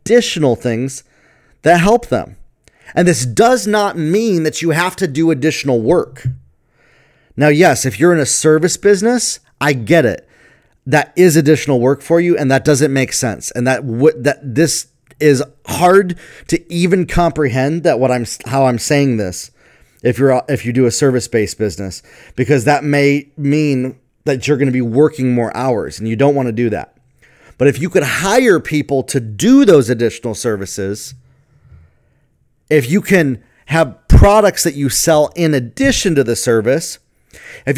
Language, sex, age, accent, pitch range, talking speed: English, male, 30-49, American, 125-165 Hz, 170 wpm